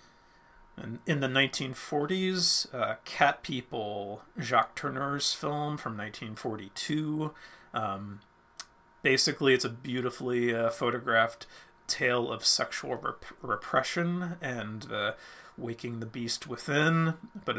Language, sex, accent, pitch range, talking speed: English, male, American, 110-135 Hz, 105 wpm